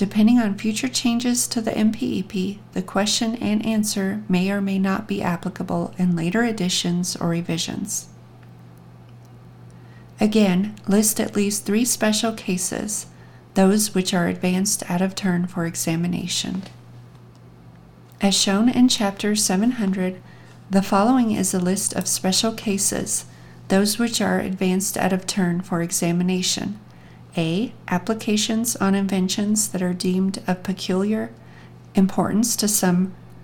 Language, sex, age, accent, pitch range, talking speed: English, female, 40-59, American, 175-210 Hz, 130 wpm